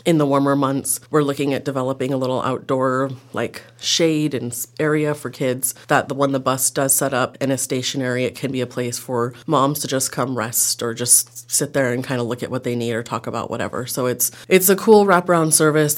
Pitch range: 125-145 Hz